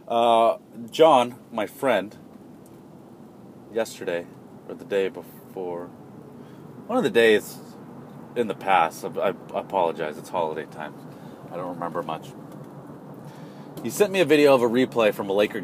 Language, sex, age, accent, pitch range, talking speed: English, male, 30-49, American, 110-160 Hz, 140 wpm